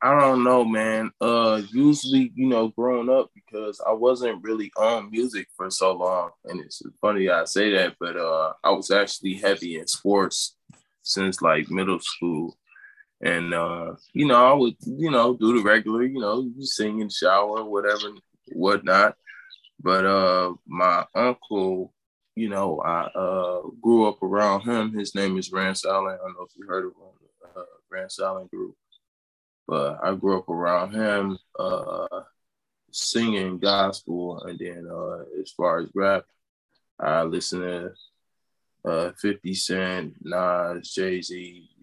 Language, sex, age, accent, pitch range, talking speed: English, male, 20-39, American, 90-110 Hz, 155 wpm